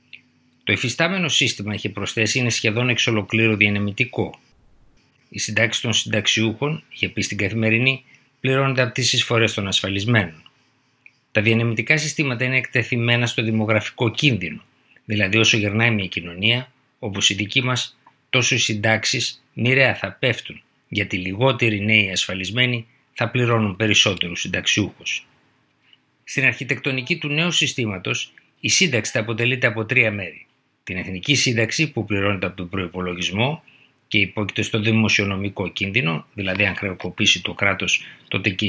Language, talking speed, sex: Greek, 135 wpm, male